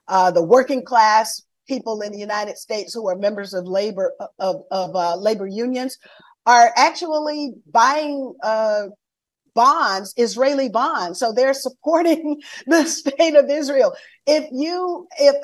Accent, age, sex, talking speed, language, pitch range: American, 50-69, female, 140 wpm, English, 235-295 Hz